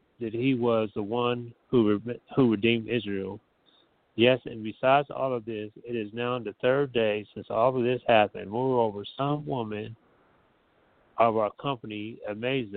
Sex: male